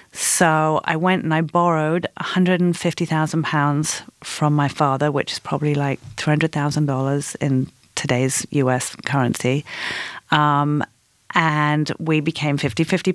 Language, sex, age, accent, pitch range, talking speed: English, female, 40-59, British, 145-170 Hz, 120 wpm